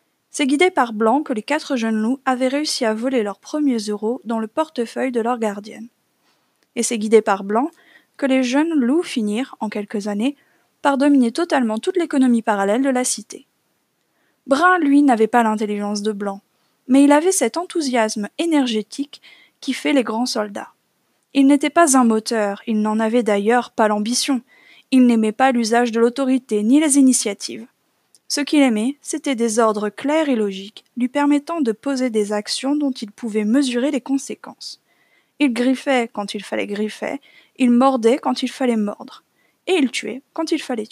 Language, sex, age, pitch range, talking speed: French, female, 20-39, 225-285 Hz, 175 wpm